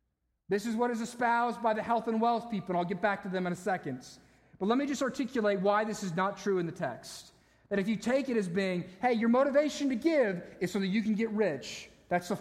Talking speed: 255 wpm